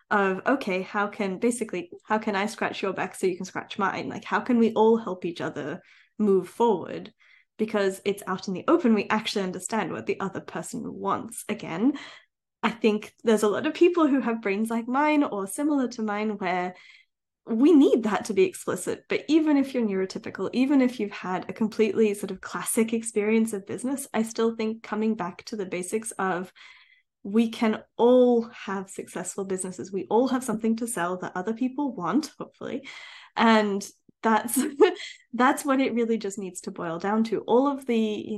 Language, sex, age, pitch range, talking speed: English, female, 10-29, 195-240 Hz, 190 wpm